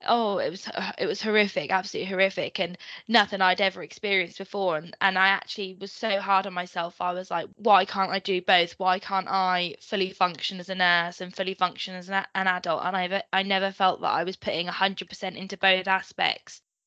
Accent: British